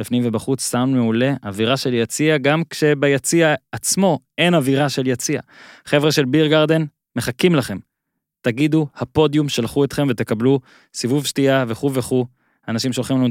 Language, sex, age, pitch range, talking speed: Hebrew, male, 20-39, 115-155 Hz, 145 wpm